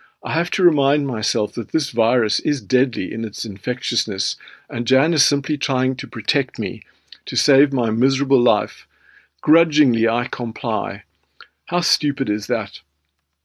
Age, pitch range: 50-69, 115-145 Hz